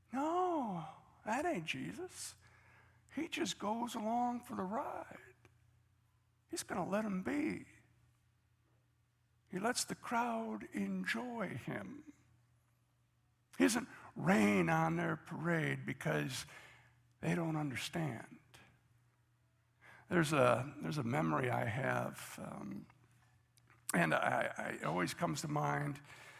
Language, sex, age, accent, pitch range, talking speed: English, male, 60-79, American, 120-185 Hz, 105 wpm